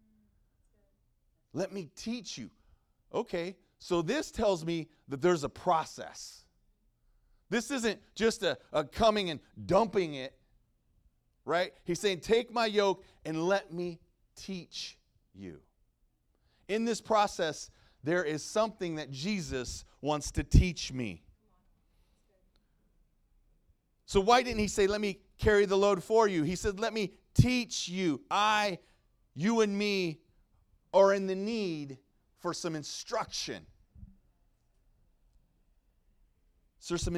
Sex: male